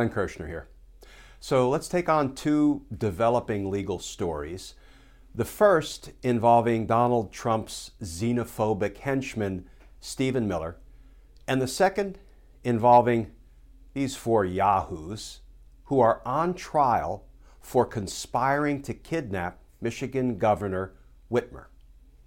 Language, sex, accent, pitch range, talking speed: English, male, American, 90-130 Hz, 100 wpm